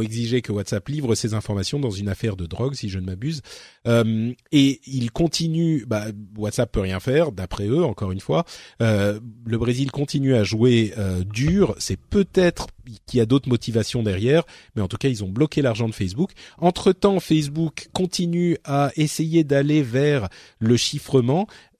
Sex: male